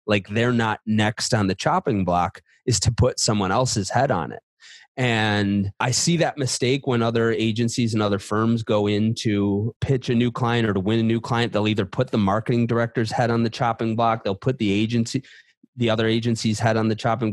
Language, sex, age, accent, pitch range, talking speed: English, male, 30-49, American, 105-125 Hz, 215 wpm